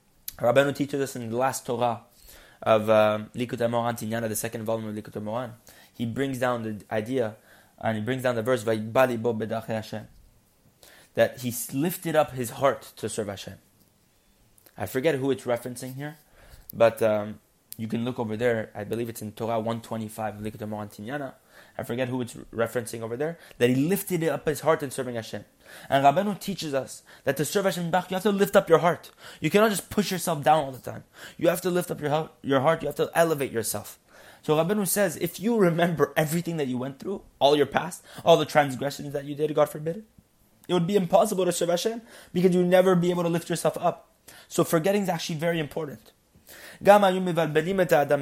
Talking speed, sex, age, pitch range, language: 200 wpm, male, 20-39, 115-170 Hz, English